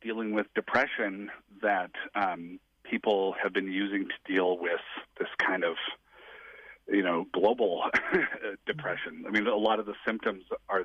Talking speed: 150 wpm